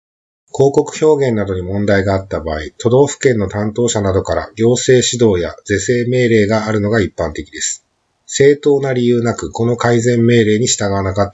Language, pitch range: Japanese, 100-125 Hz